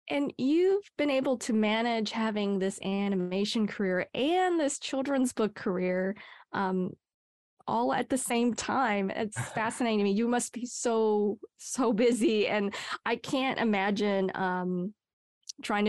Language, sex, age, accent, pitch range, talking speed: English, female, 20-39, American, 195-250 Hz, 140 wpm